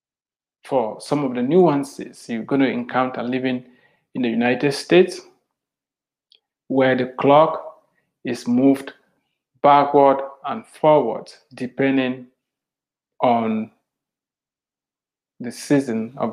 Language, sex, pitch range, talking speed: English, male, 125-145 Hz, 100 wpm